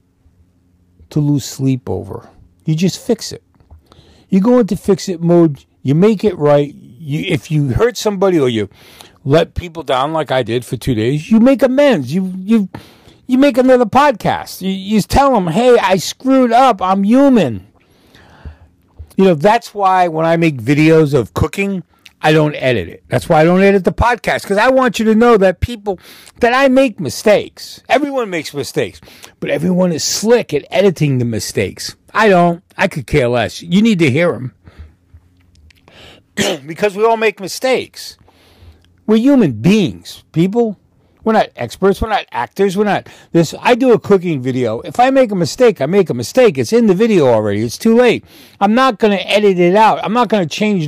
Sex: male